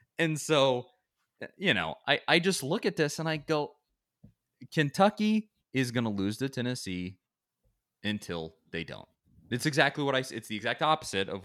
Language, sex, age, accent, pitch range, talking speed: English, male, 20-39, American, 100-135 Hz, 175 wpm